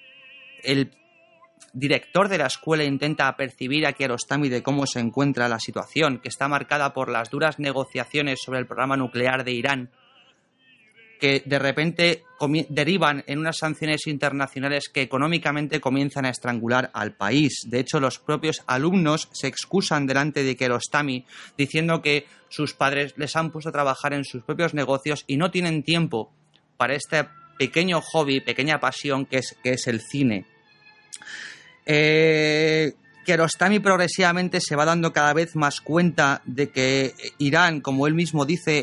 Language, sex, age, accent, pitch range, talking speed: Spanish, male, 30-49, Spanish, 130-155 Hz, 155 wpm